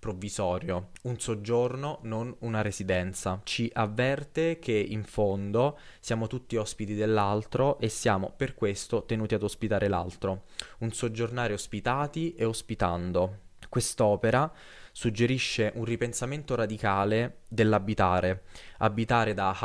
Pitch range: 100-120 Hz